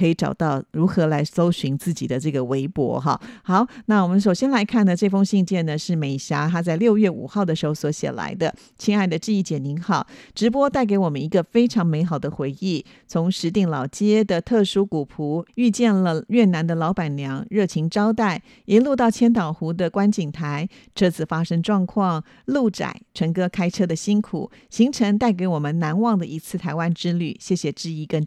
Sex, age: female, 50-69